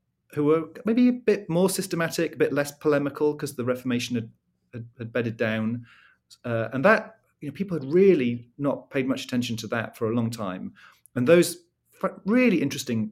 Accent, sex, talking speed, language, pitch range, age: British, male, 185 wpm, English, 115-145 Hz, 40-59